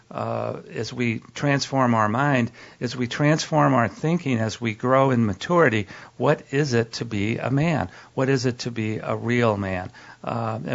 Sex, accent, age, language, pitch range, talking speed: male, American, 50-69, English, 110-130 Hz, 180 wpm